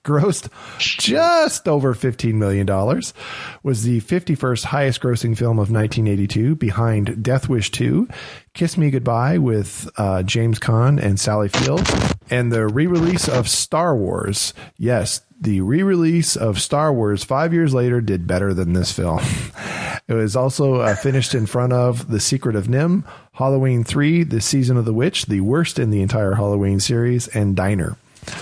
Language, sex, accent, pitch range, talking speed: English, male, American, 105-135 Hz, 160 wpm